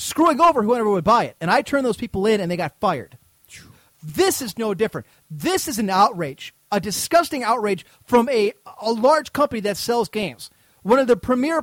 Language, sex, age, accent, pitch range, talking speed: English, male, 30-49, American, 170-240 Hz, 200 wpm